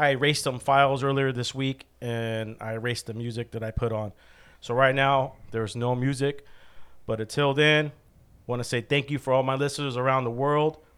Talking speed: 210 wpm